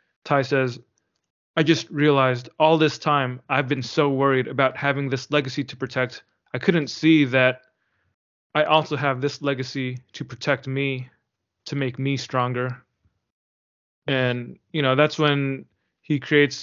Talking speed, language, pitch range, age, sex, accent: 150 wpm, English, 130-145 Hz, 20-39, male, American